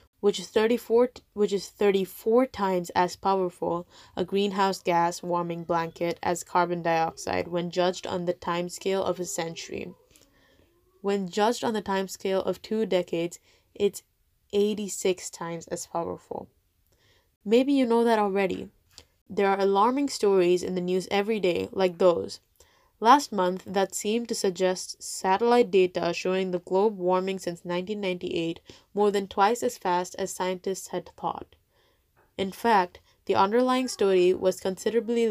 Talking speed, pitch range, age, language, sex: 145 wpm, 175-205 Hz, 10-29, English, female